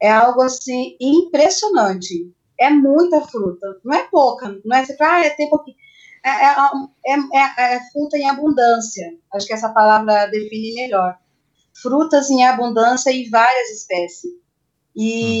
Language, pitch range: Portuguese, 210-255 Hz